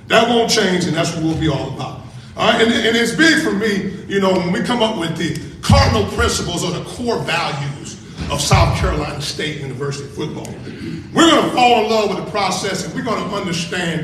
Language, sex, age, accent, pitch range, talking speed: English, male, 40-59, American, 180-245 Hz, 220 wpm